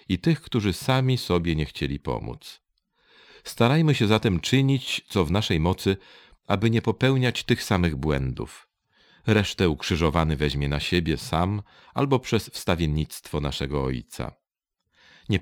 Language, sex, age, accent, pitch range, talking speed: Polish, male, 40-59, native, 80-115 Hz, 130 wpm